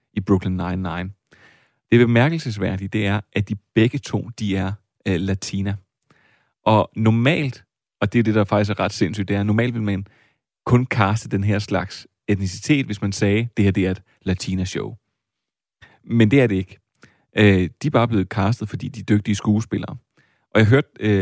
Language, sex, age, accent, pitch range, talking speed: Danish, male, 30-49, native, 100-115 Hz, 185 wpm